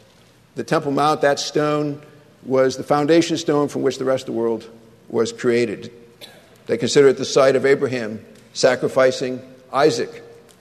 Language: English